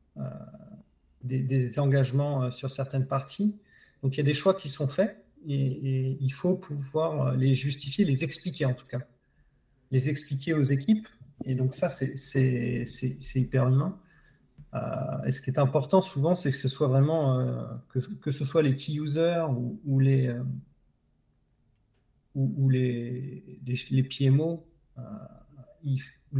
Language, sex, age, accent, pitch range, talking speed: French, male, 40-59, French, 130-150 Hz, 165 wpm